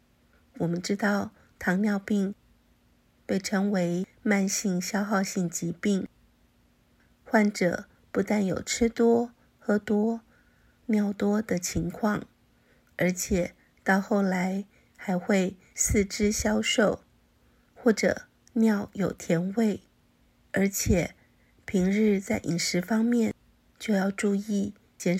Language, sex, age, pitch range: Chinese, female, 50-69, 185-215 Hz